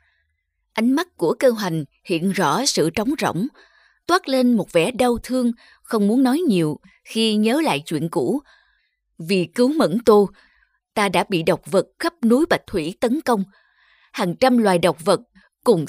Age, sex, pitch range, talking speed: 20-39, female, 180-265 Hz, 175 wpm